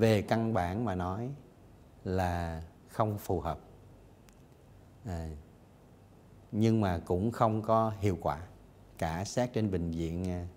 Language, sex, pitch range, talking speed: Vietnamese, male, 90-115 Hz, 120 wpm